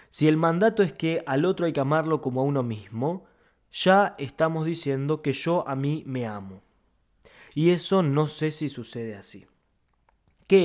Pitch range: 115-155 Hz